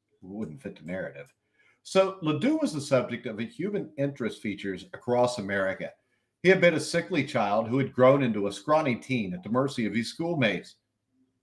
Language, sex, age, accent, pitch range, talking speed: English, male, 50-69, American, 105-140 Hz, 185 wpm